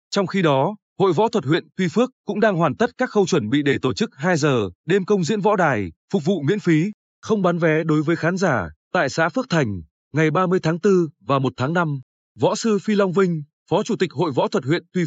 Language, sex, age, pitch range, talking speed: Vietnamese, male, 20-39, 145-200 Hz, 250 wpm